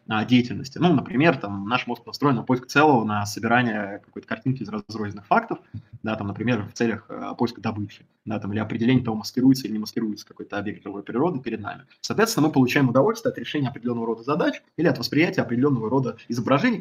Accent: native